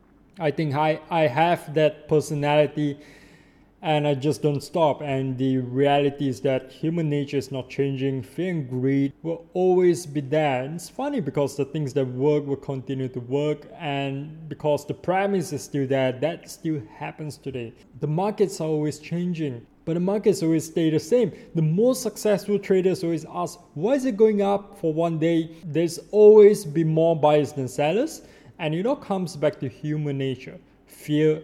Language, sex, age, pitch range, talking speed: English, male, 20-39, 135-160 Hz, 180 wpm